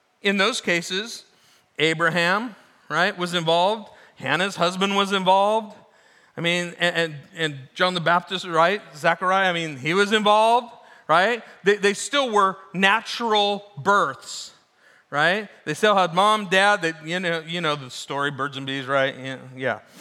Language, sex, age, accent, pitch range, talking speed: English, male, 40-59, American, 135-190 Hz, 155 wpm